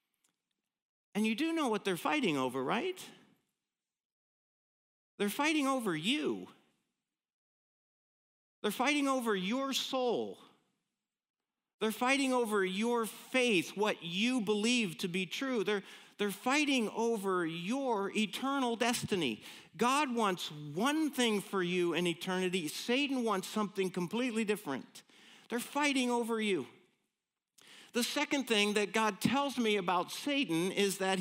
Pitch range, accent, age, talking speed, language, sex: 200-255 Hz, American, 50-69, 125 wpm, English, male